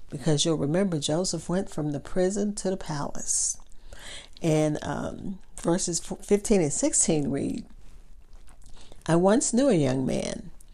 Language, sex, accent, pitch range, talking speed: English, female, American, 155-215 Hz, 135 wpm